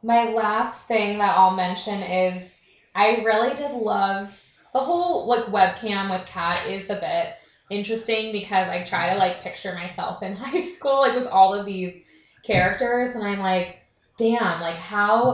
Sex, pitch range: female, 175-220 Hz